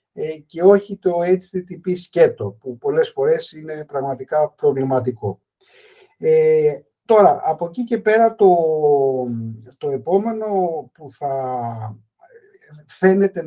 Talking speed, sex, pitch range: 105 wpm, male, 140-200 Hz